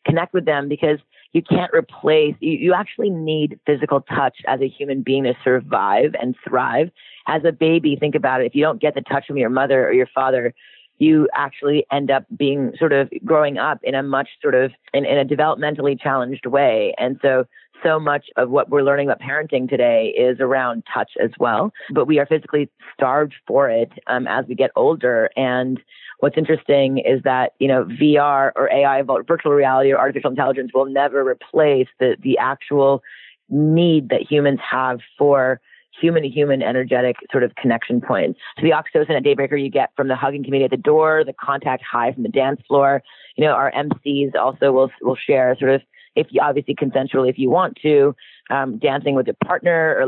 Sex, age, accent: female, 30-49, American